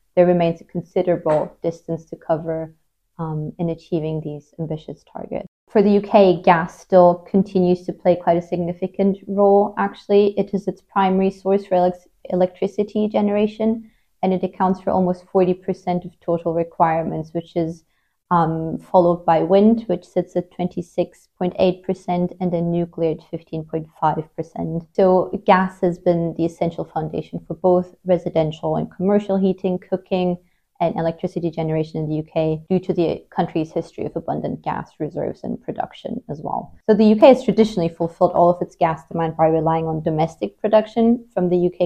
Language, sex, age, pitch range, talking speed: English, female, 30-49, 165-190 Hz, 160 wpm